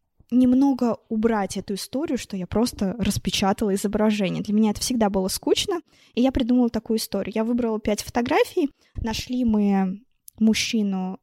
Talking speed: 145 wpm